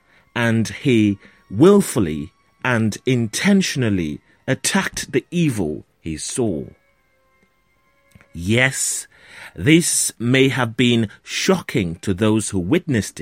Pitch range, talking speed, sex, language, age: 100-155 Hz, 90 wpm, male, English, 30-49